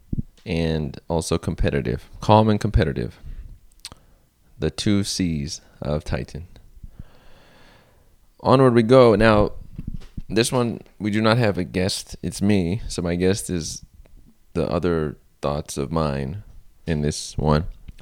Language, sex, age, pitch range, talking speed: English, male, 20-39, 85-115 Hz, 125 wpm